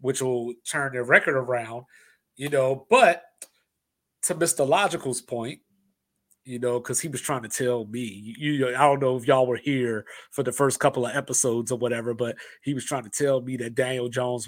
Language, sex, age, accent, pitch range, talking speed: English, male, 30-49, American, 125-155 Hz, 205 wpm